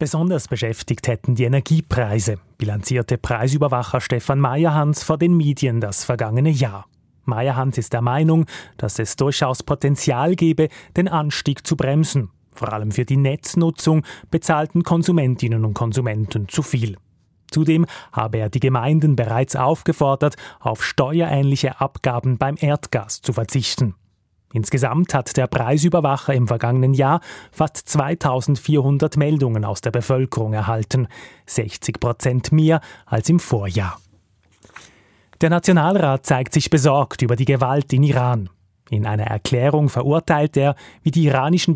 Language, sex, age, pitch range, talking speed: German, male, 30-49, 115-150 Hz, 130 wpm